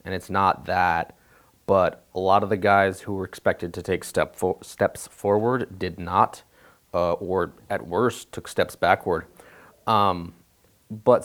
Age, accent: 30-49, American